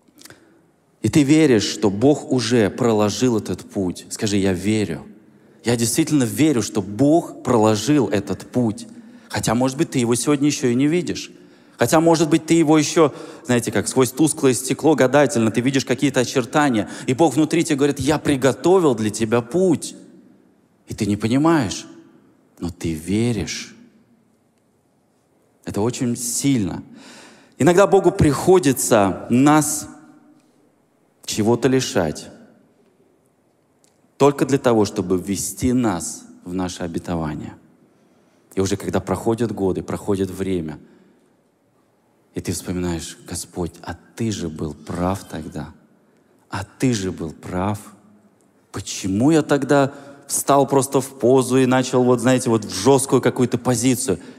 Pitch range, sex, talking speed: 100-140 Hz, male, 130 wpm